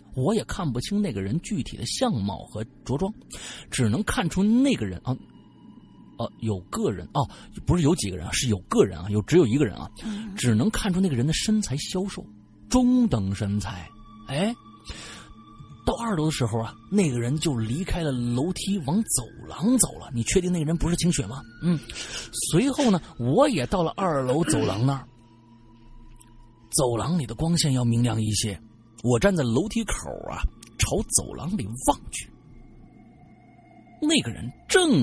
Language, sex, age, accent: Chinese, male, 30-49, native